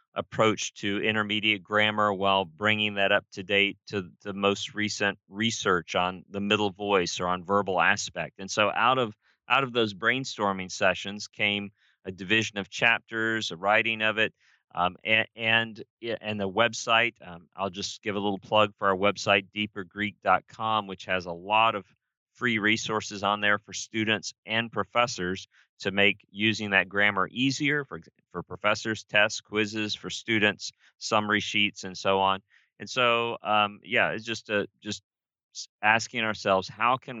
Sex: male